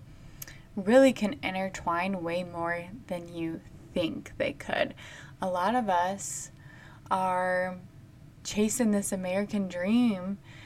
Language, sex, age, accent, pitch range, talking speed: English, female, 20-39, American, 155-195 Hz, 105 wpm